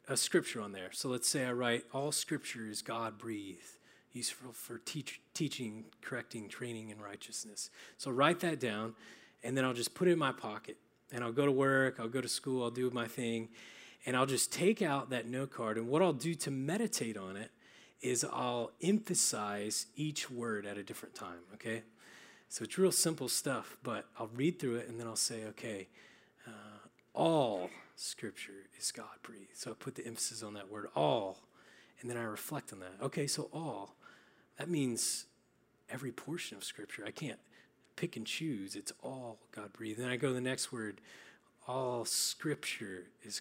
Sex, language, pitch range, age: male, English, 110-140 Hz, 30-49